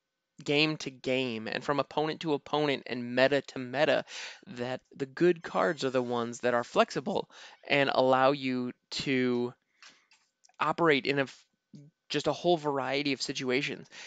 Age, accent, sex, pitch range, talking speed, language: 20-39, American, male, 130-175 Hz, 150 wpm, English